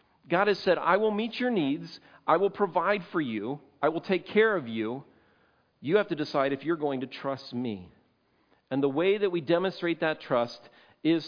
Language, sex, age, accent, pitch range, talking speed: English, male, 40-59, American, 150-195 Hz, 200 wpm